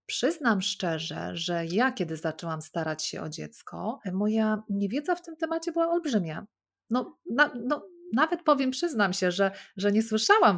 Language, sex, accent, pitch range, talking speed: Polish, female, native, 185-225 Hz, 160 wpm